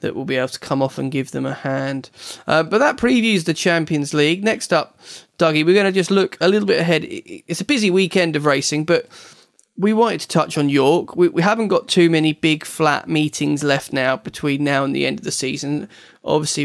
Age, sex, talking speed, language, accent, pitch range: 20-39, male, 230 wpm, English, British, 140-175 Hz